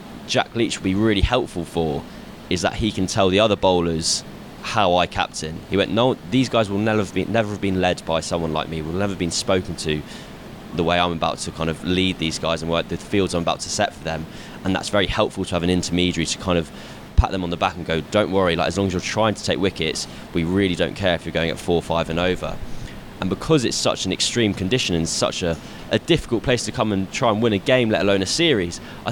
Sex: male